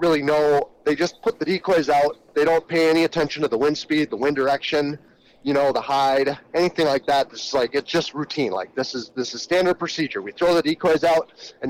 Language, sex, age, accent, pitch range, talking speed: English, male, 30-49, American, 140-170 Hz, 235 wpm